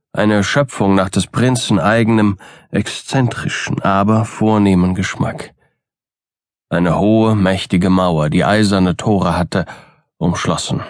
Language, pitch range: German, 95-105 Hz